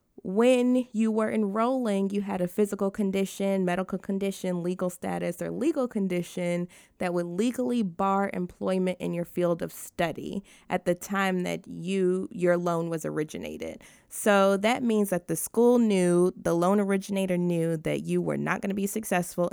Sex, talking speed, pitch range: female, 165 wpm, 175-205 Hz